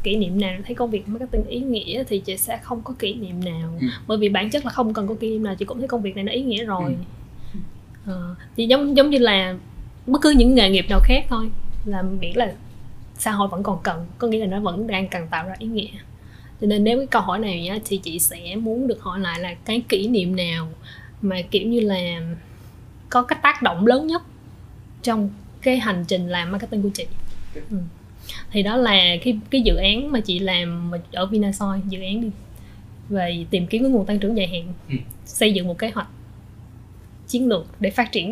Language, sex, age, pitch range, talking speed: Vietnamese, female, 20-39, 175-235 Hz, 220 wpm